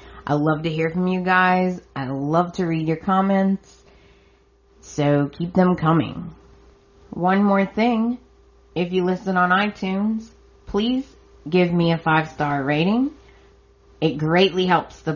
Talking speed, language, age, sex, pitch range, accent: 145 wpm, English, 30-49, female, 155-195 Hz, American